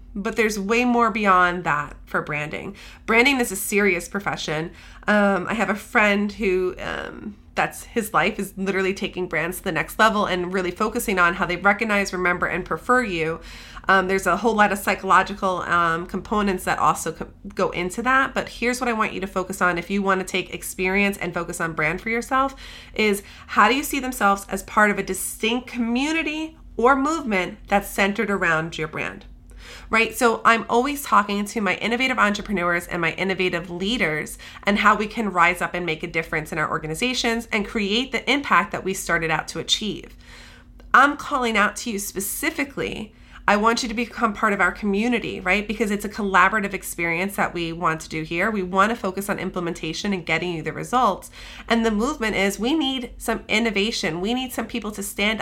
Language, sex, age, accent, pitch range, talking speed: English, female, 30-49, American, 180-230 Hz, 200 wpm